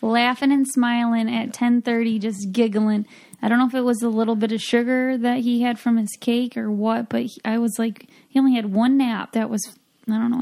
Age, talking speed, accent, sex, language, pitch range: 10-29, 230 wpm, American, female, English, 215-250 Hz